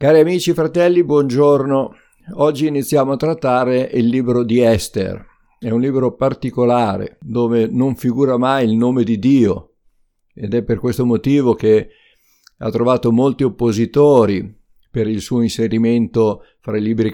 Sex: male